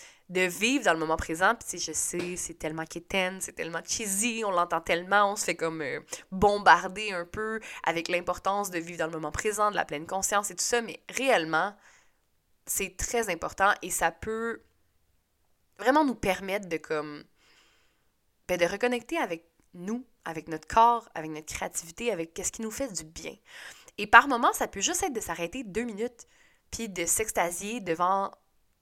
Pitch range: 165-220 Hz